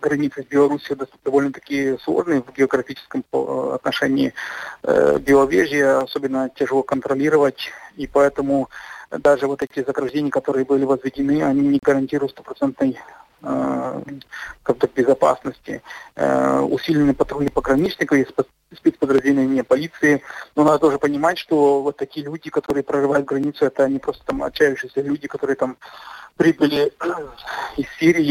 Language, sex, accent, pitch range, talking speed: Russian, male, native, 135-145 Hz, 110 wpm